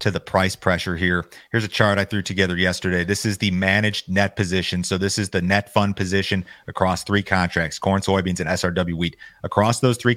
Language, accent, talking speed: English, American, 210 wpm